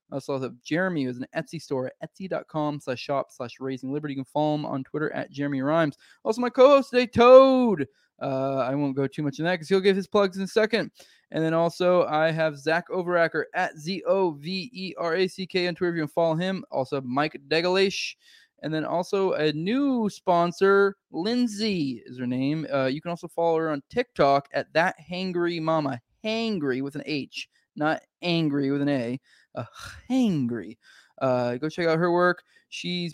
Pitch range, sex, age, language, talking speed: 135-180 Hz, male, 20-39, English, 185 wpm